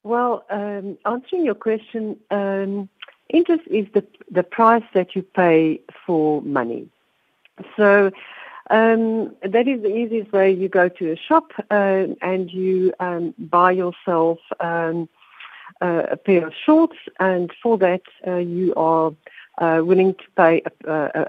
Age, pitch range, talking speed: 60-79, 165-215 Hz, 145 wpm